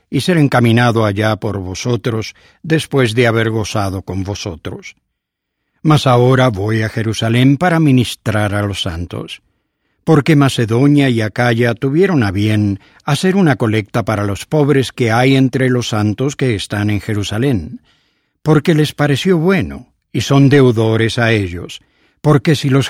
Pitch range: 105-140 Hz